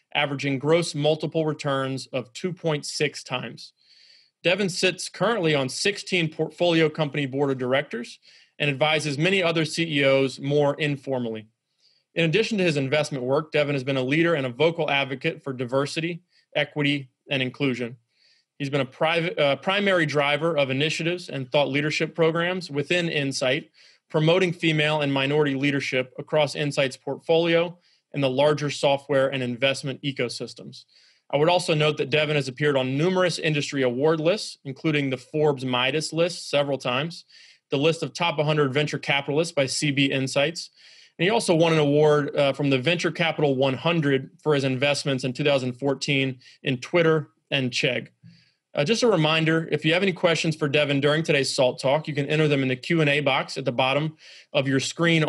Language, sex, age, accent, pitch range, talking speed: English, male, 30-49, American, 135-165 Hz, 165 wpm